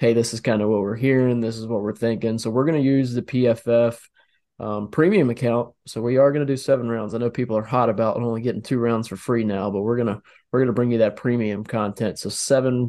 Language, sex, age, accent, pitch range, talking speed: English, male, 20-39, American, 110-130 Hz, 260 wpm